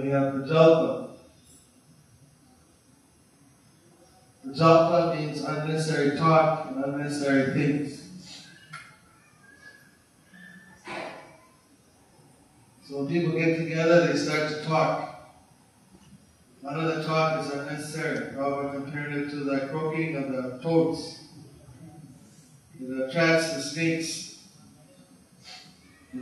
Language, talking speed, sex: English, 85 wpm, male